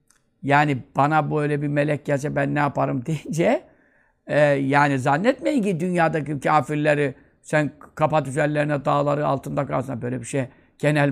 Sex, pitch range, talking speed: male, 145-205 Hz, 135 wpm